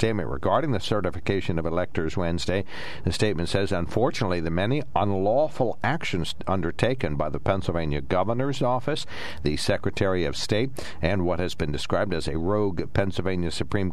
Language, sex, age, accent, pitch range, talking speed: English, male, 60-79, American, 80-100 Hz, 150 wpm